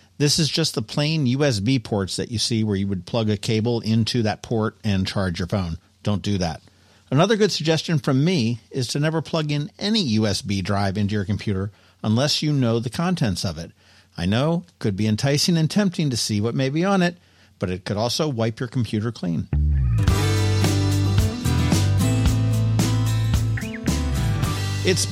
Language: English